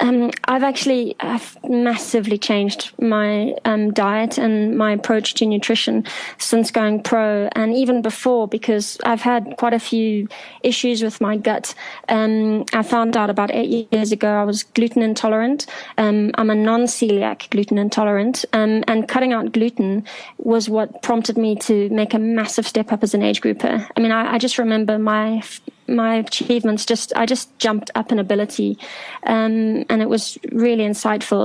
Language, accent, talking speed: English, British, 170 wpm